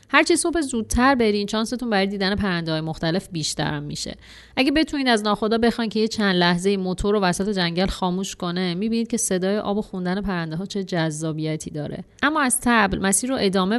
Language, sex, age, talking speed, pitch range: Persian, female, 30-49, 195 wpm, 185-235 Hz